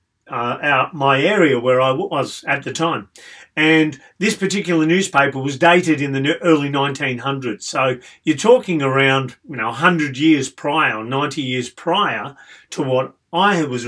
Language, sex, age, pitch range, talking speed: English, male, 40-59, 145-195 Hz, 150 wpm